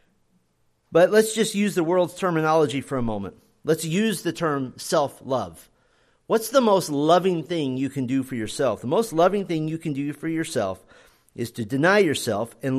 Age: 40-59